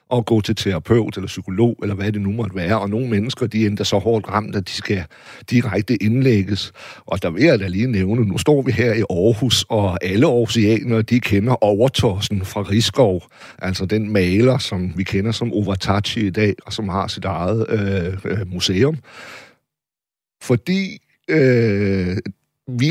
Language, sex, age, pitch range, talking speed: Danish, male, 60-79, 100-125 Hz, 175 wpm